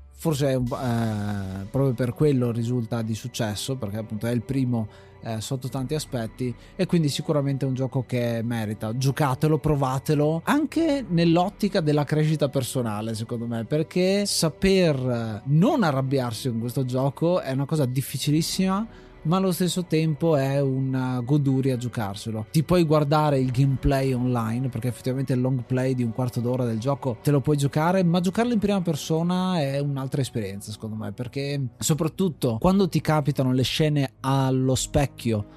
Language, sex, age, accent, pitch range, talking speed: Italian, male, 20-39, native, 125-155 Hz, 155 wpm